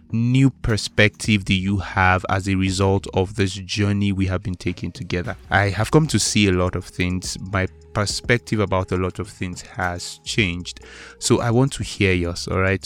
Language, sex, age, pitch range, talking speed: English, male, 20-39, 90-100 Hz, 190 wpm